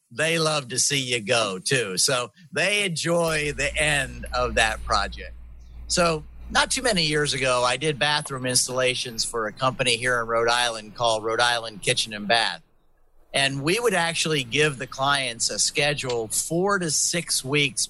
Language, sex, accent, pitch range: English, male, American, 125-155 Hz